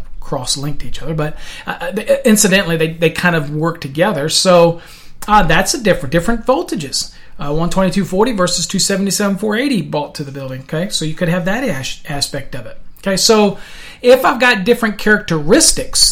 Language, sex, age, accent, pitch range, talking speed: English, male, 40-59, American, 150-185 Hz, 170 wpm